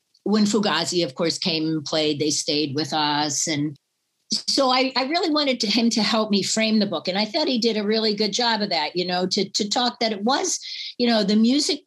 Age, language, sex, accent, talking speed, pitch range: 50-69, English, female, American, 240 wpm, 160-215 Hz